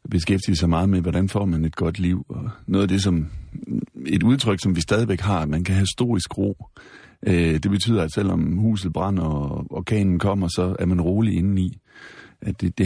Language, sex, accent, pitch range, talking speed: Danish, male, native, 85-110 Hz, 200 wpm